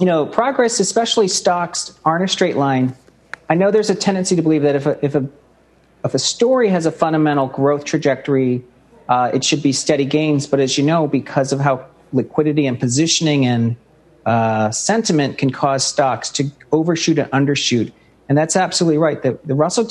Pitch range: 135-160 Hz